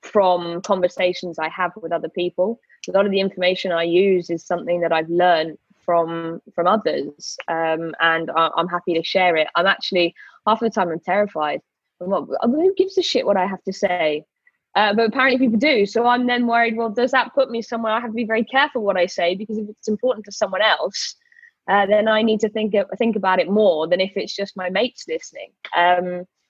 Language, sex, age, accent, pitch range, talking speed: English, female, 20-39, British, 170-220 Hz, 215 wpm